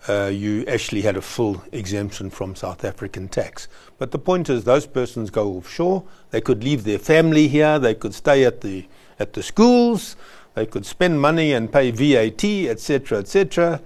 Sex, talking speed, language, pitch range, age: male, 180 wpm, English, 100-135 Hz, 60-79